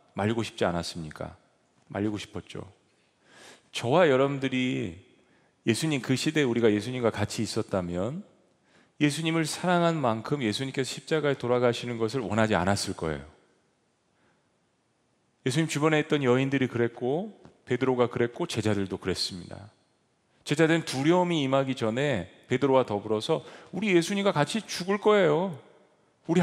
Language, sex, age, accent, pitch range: Korean, male, 40-59, native, 120-165 Hz